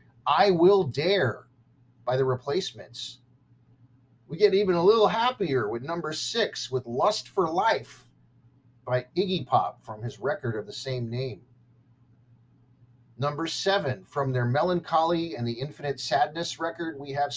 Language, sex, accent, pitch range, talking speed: English, male, American, 120-170 Hz, 140 wpm